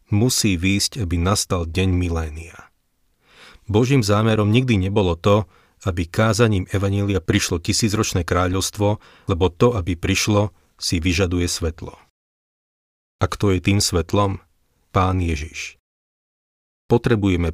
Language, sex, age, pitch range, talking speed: Slovak, male, 40-59, 90-105 Hz, 110 wpm